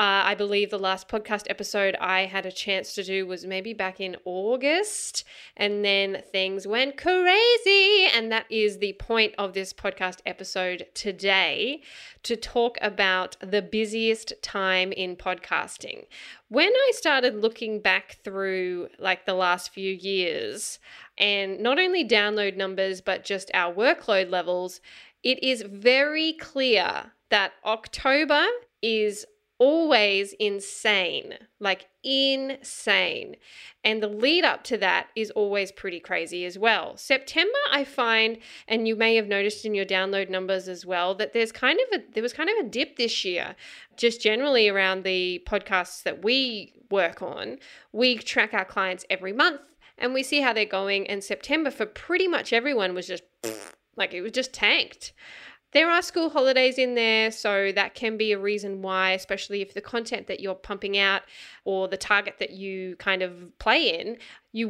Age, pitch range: 10-29, 190-255 Hz